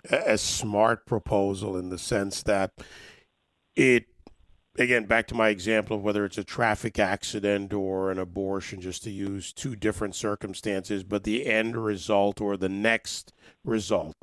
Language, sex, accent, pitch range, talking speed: English, male, American, 100-115 Hz, 150 wpm